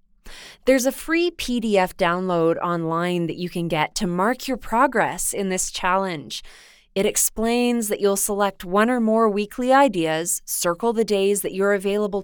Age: 20-39